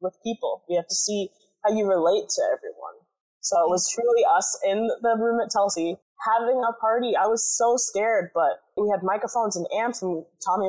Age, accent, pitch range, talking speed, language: 20-39, American, 170-230 Hz, 200 wpm, English